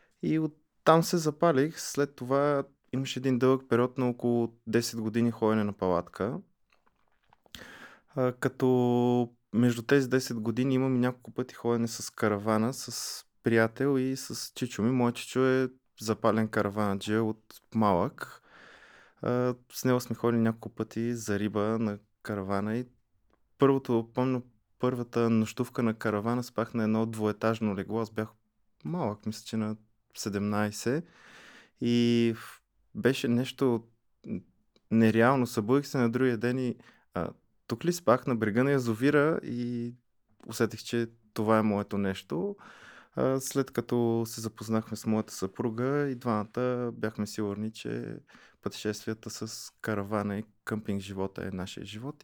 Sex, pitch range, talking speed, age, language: male, 110-125 Hz, 140 wpm, 20-39, Bulgarian